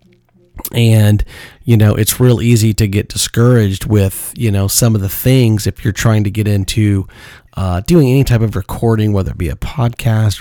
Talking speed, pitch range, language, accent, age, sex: 190 wpm, 100-120 Hz, English, American, 30-49, male